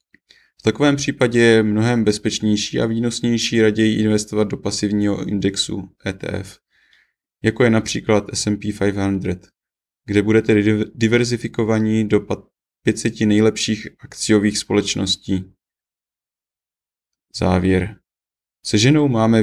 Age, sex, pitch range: 20-39, male, 105-115 Hz